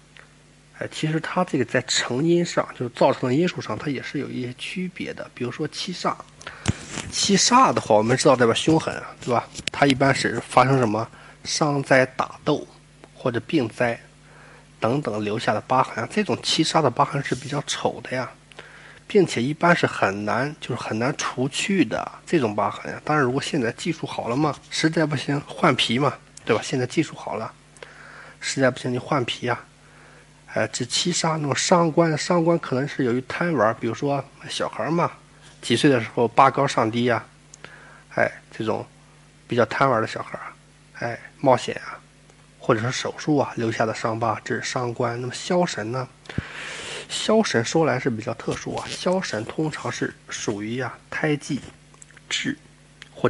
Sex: male